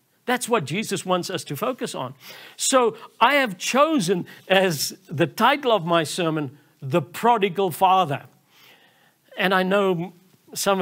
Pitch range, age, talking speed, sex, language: 150-195 Hz, 60-79, 140 wpm, male, English